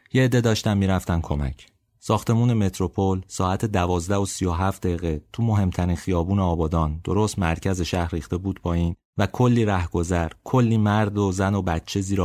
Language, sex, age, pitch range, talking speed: Persian, male, 30-49, 85-105 Hz, 155 wpm